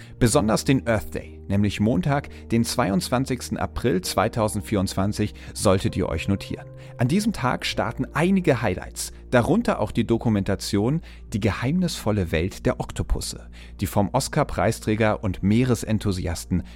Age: 40-59